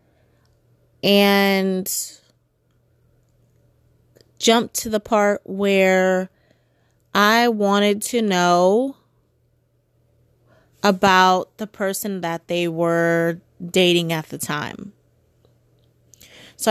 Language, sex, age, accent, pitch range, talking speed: English, female, 30-49, American, 160-200 Hz, 75 wpm